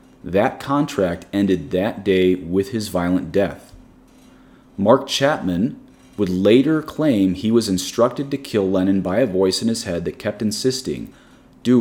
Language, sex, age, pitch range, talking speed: English, male, 30-49, 90-115 Hz, 150 wpm